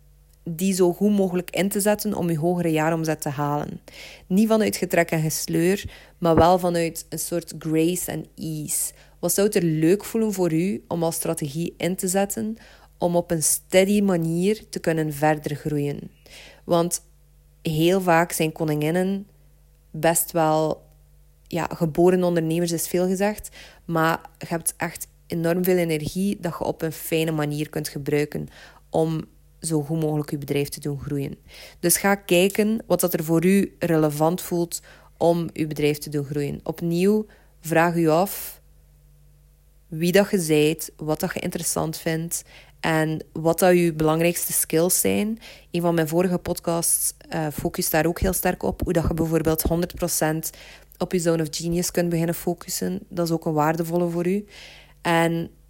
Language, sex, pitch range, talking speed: Dutch, female, 155-175 Hz, 165 wpm